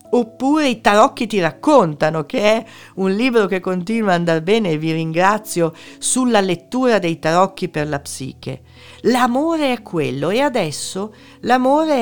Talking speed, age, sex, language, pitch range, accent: 150 wpm, 50-69, female, Italian, 140-215 Hz, native